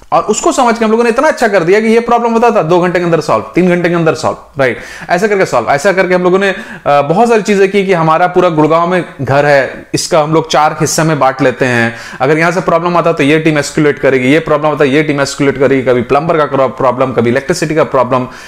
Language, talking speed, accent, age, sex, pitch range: Hindi, 210 wpm, native, 30-49, male, 140-200 Hz